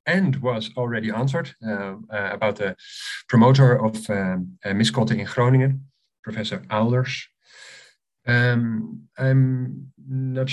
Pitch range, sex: 105-130 Hz, male